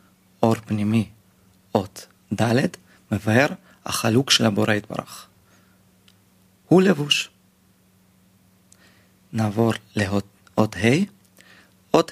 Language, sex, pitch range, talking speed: Hebrew, male, 95-120 Hz, 75 wpm